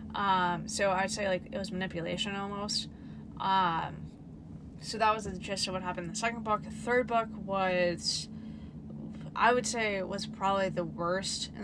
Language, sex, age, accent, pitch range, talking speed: English, female, 20-39, American, 160-200 Hz, 180 wpm